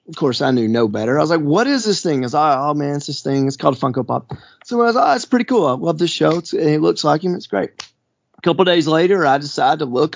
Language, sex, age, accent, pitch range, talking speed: English, male, 30-49, American, 130-190 Hz, 320 wpm